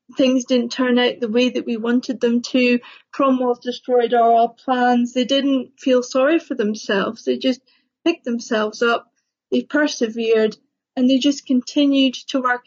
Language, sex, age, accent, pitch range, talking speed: English, female, 40-59, British, 235-270 Hz, 160 wpm